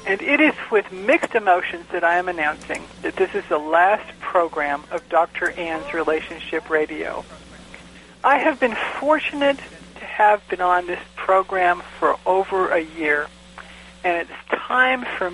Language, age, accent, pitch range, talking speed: English, 60-79, American, 165-245 Hz, 155 wpm